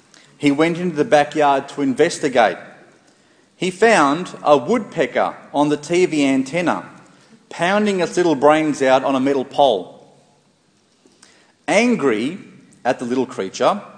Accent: Australian